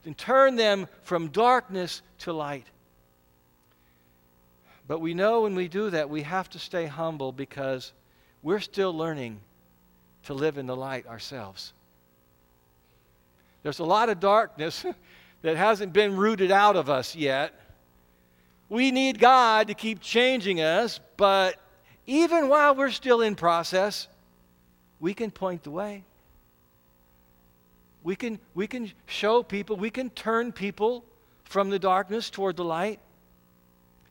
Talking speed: 135 wpm